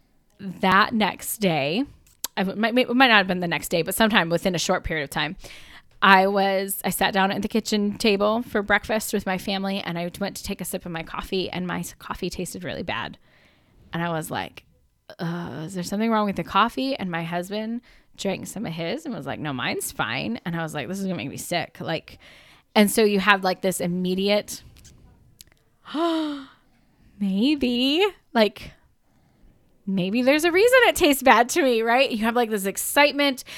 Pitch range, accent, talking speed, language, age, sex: 185-230 Hz, American, 200 wpm, English, 10-29, female